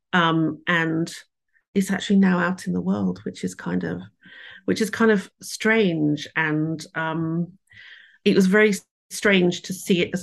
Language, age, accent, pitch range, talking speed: English, 40-59, British, 165-195 Hz, 165 wpm